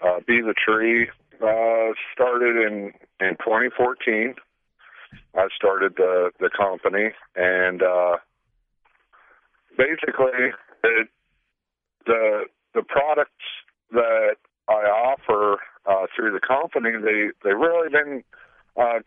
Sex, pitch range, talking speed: male, 95-145 Hz, 105 wpm